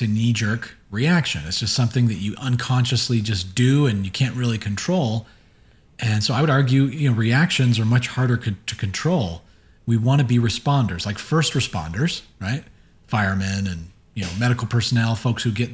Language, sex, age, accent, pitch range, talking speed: English, male, 40-59, American, 105-130 Hz, 180 wpm